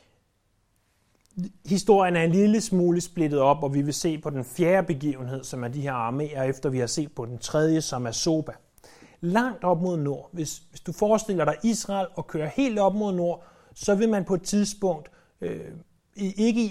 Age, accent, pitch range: 30-49, native, 135-185 Hz